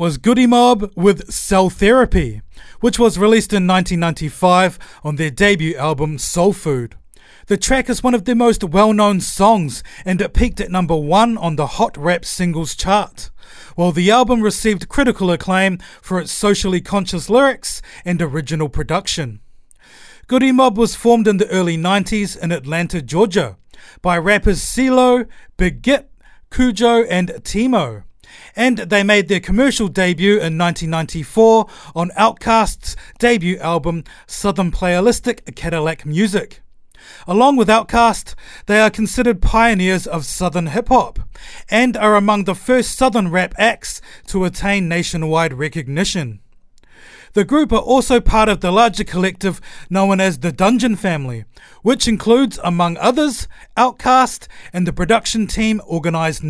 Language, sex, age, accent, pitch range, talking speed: English, male, 30-49, Australian, 170-225 Hz, 140 wpm